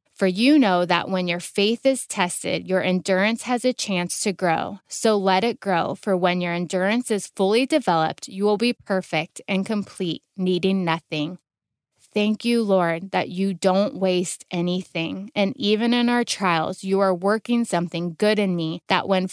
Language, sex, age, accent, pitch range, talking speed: English, female, 20-39, American, 180-230 Hz, 175 wpm